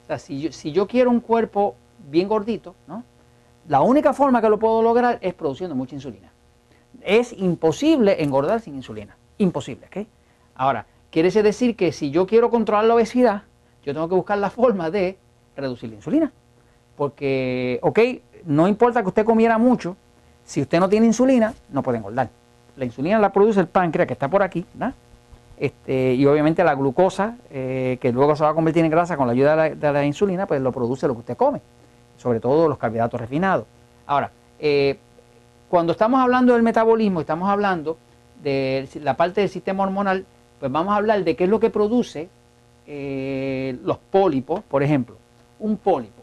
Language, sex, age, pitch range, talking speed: Spanish, male, 40-59, 125-205 Hz, 185 wpm